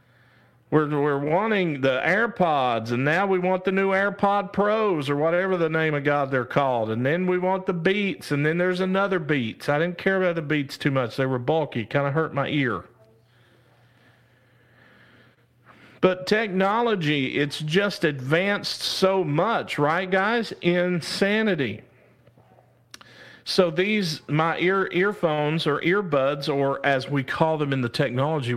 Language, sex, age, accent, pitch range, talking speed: English, male, 50-69, American, 125-175 Hz, 155 wpm